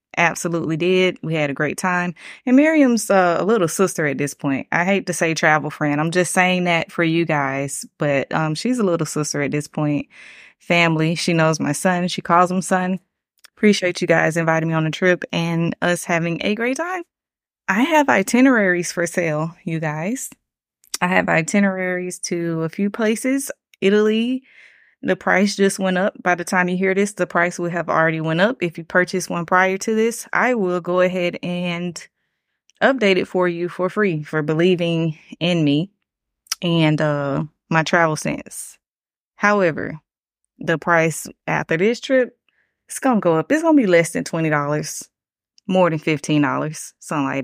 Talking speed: 180 wpm